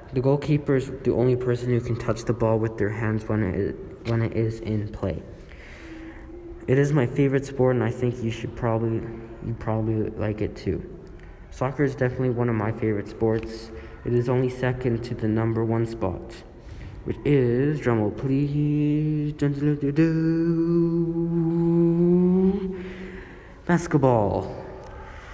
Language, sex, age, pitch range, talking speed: English, male, 20-39, 115-135 Hz, 135 wpm